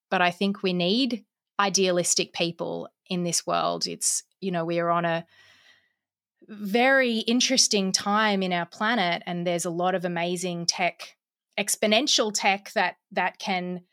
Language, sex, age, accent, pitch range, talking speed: English, female, 20-39, Australian, 175-205 Hz, 150 wpm